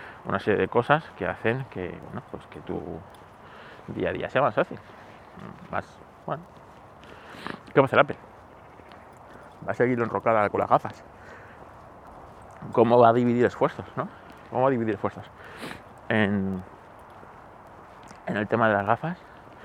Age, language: 30-49, Spanish